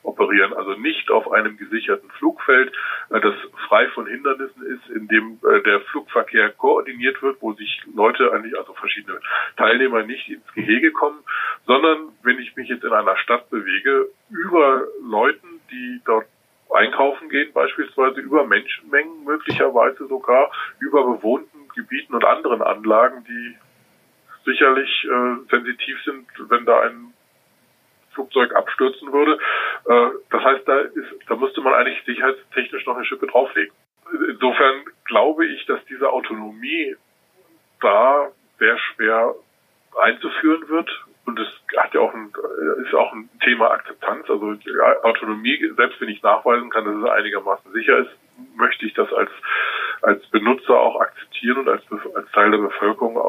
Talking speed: 145 wpm